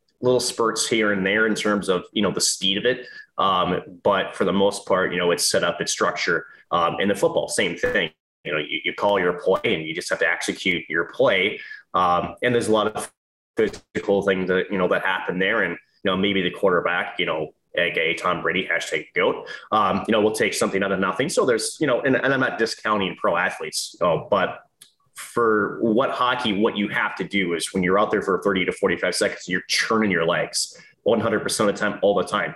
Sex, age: male, 20-39